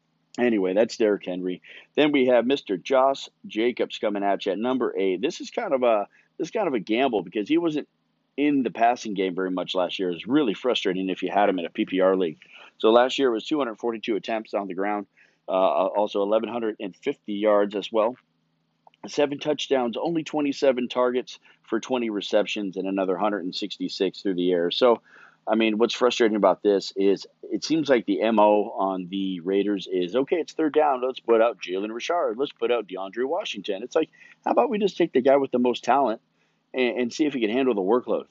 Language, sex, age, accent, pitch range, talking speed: English, male, 40-59, American, 100-135 Hz, 205 wpm